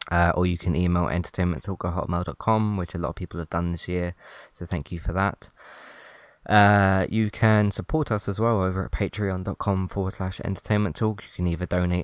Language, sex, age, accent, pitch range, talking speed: English, male, 20-39, British, 85-105 Hz, 190 wpm